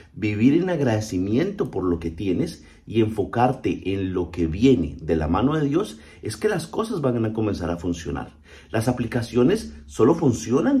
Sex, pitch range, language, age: male, 105-160 Hz, Spanish, 50-69